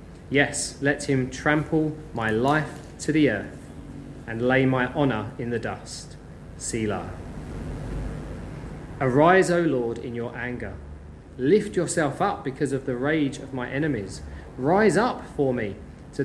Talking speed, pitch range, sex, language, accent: 140 wpm, 110-145 Hz, male, English, British